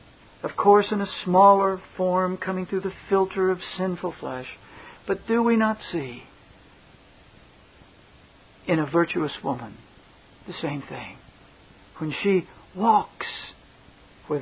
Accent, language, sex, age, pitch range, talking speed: American, English, male, 60-79, 145-190 Hz, 120 wpm